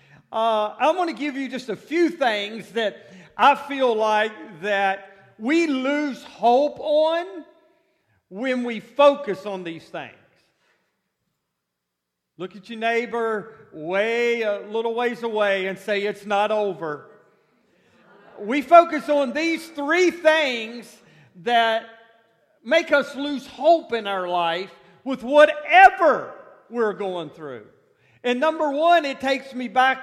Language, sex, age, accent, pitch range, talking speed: English, male, 50-69, American, 205-290 Hz, 130 wpm